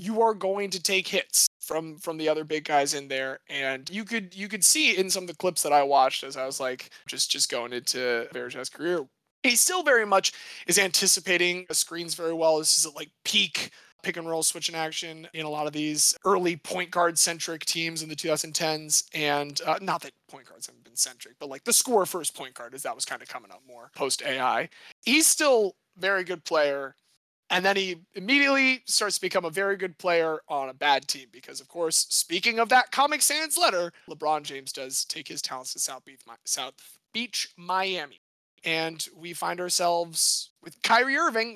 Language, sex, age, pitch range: English, male, 20-39, 155-205 Hz